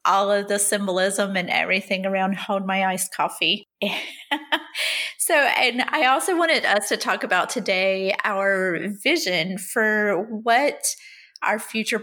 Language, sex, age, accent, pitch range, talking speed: English, female, 30-49, American, 195-235 Hz, 135 wpm